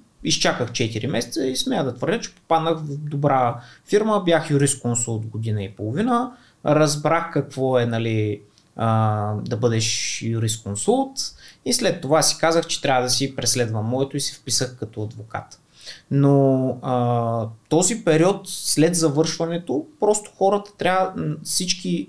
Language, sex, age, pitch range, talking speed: Bulgarian, male, 20-39, 120-160 Hz, 140 wpm